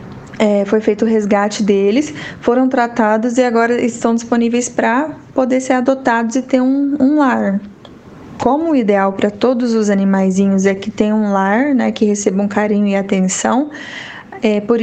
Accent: Brazilian